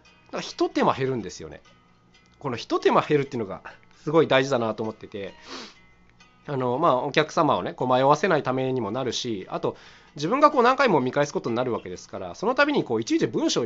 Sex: male